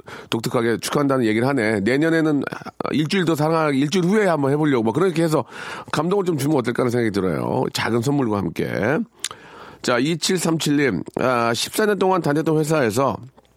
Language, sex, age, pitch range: Korean, male, 40-59, 105-150 Hz